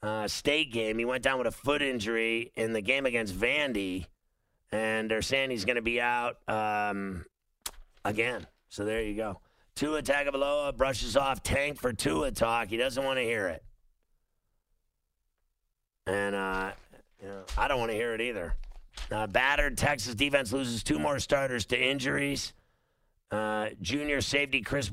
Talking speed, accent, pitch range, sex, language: 160 wpm, American, 105-135 Hz, male, English